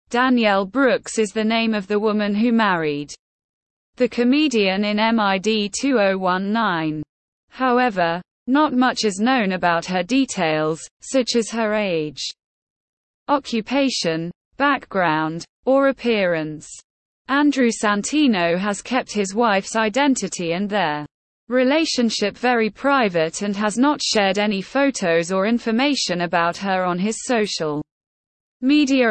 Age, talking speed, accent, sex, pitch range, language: 20-39, 120 wpm, British, female, 185-250 Hz, English